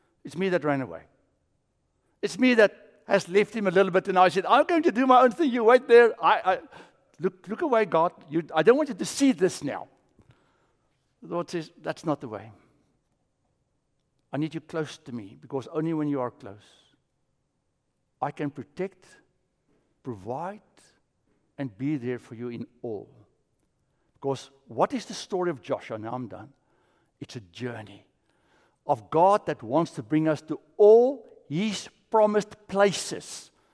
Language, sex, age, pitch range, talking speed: English, male, 60-79, 140-205 Hz, 170 wpm